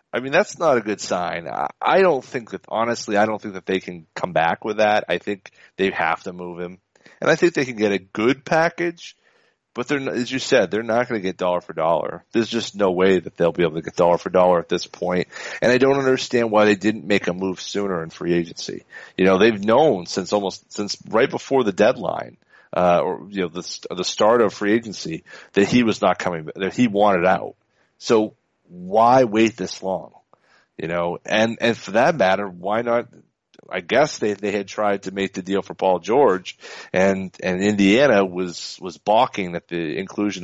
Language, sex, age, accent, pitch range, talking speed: English, male, 40-59, American, 90-115 Hz, 220 wpm